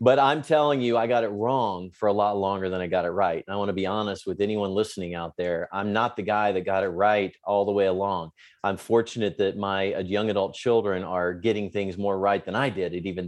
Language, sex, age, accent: English, male, 40-59, American